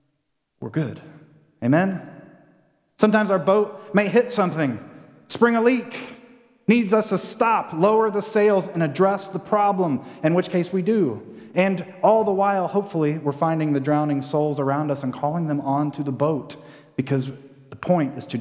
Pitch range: 140-185 Hz